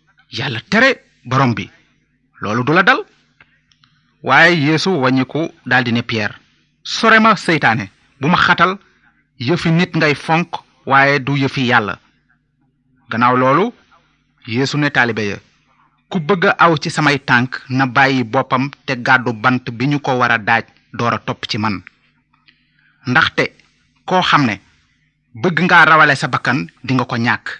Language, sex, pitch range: Italian, male, 125-165 Hz